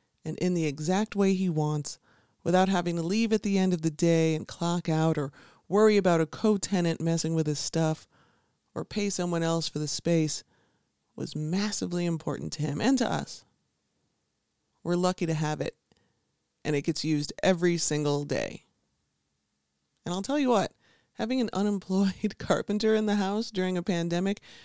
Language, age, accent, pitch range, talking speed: English, 30-49, American, 150-195 Hz, 175 wpm